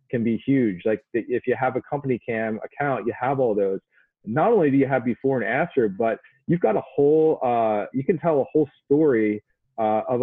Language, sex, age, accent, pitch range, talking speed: English, male, 30-49, American, 110-135 Hz, 215 wpm